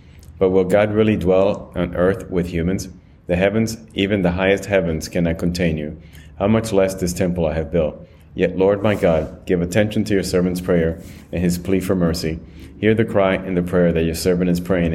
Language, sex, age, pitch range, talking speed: English, male, 30-49, 85-95 Hz, 210 wpm